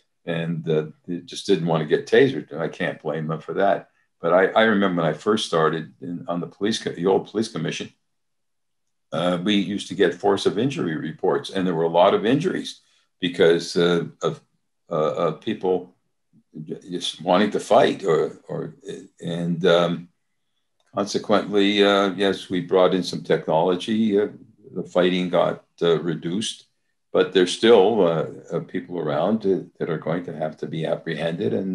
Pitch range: 85-95 Hz